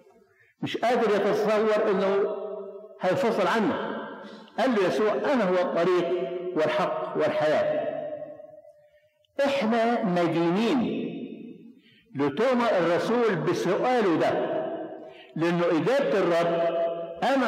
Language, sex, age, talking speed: Arabic, male, 60-79, 80 wpm